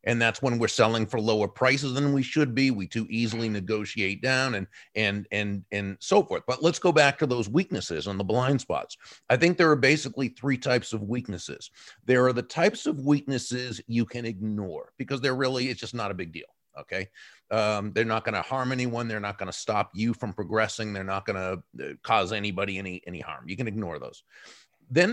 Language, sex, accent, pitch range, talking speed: English, male, American, 105-130 Hz, 210 wpm